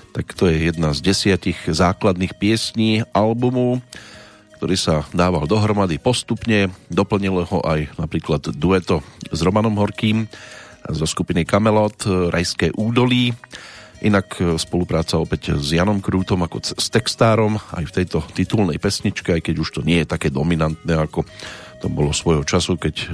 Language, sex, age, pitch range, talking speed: Slovak, male, 40-59, 85-105 Hz, 145 wpm